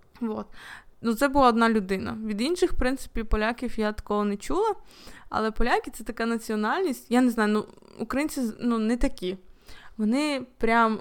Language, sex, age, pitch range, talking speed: Ukrainian, female, 20-39, 215-255 Hz, 160 wpm